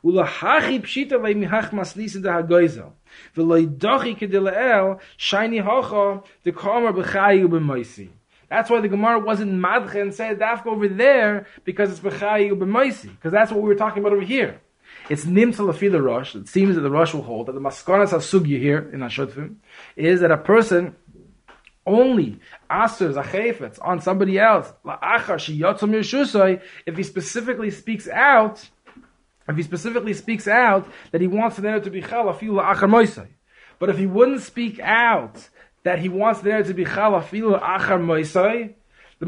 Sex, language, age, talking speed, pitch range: male, English, 20-39, 130 wpm, 175-215 Hz